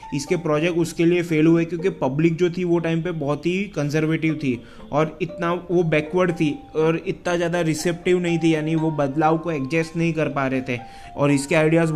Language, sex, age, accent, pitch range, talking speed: Hindi, male, 20-39, native, 150-170 Hz, 205 wpm